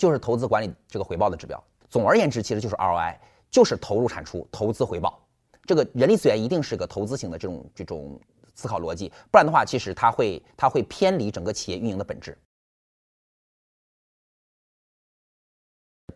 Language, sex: Chinese, male